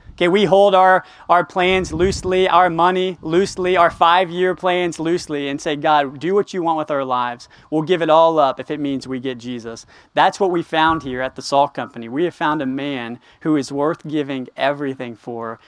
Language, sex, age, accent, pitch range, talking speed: English, male, 20-39, American, 140-180 Hz, 205 wpm